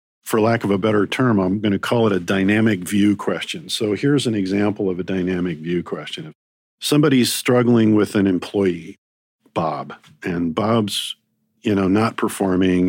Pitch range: 90-115 Hz